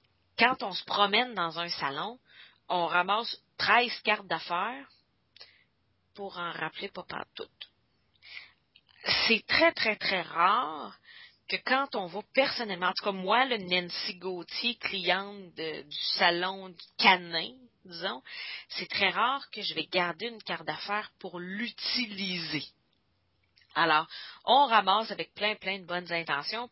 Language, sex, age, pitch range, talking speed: English, female, 30-49, 170-235 Hz, 130 wpm